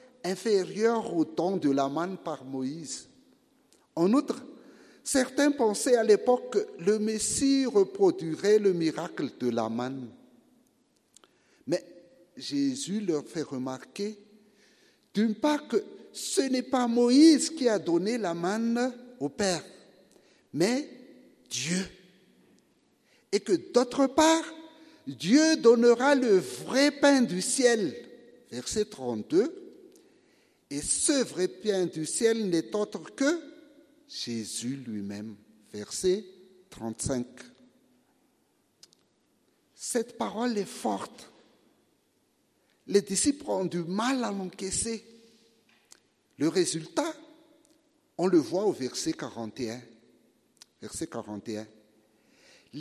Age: 60-79